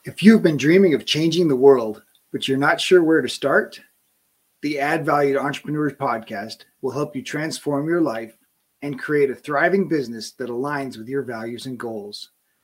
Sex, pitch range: male, 125-160 Hz